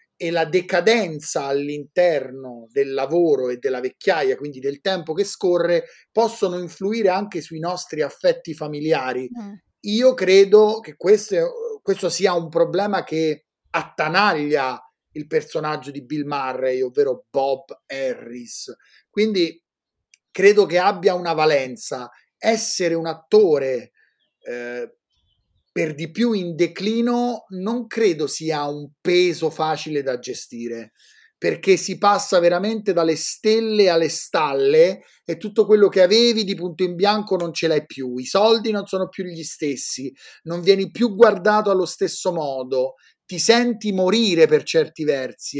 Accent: native